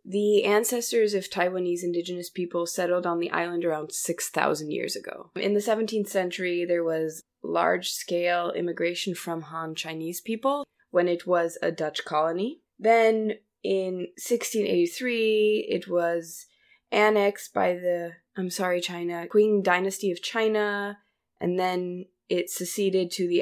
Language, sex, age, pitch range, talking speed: English, female, 20-39, 170-205 Hz, 135 wpm